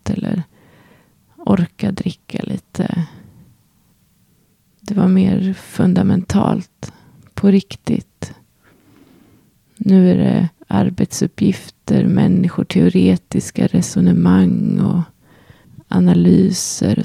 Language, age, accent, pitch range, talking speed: Swedish, 20-39, native, 160-200 Hz, 65 wpm